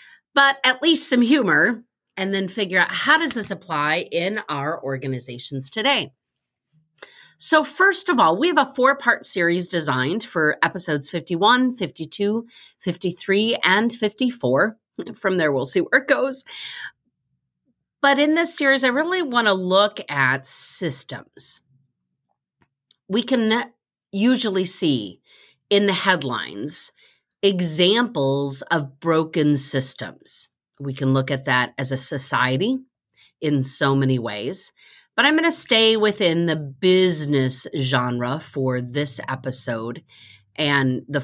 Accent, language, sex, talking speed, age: American, English, female, 130 wpm, 40-59